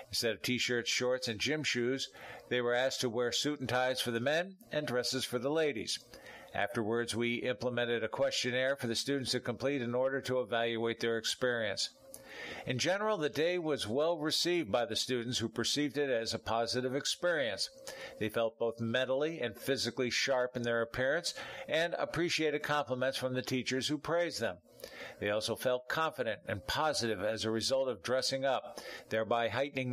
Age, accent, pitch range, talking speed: 50-69, American, 120-145 Hz, 180 wpm